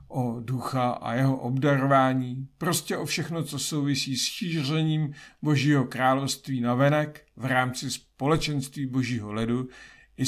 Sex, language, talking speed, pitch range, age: male, Czech, 130 wpm, 115-140 Hz, 50-69